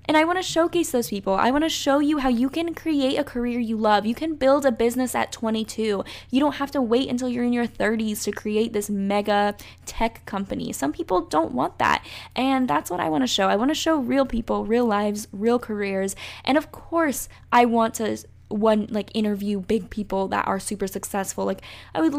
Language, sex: English, female